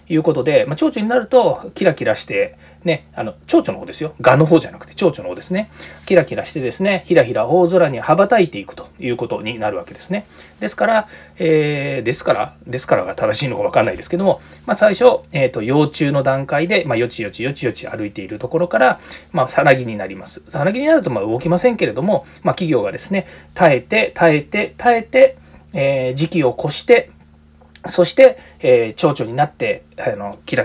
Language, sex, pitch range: Japanese, male, 135-210 Hz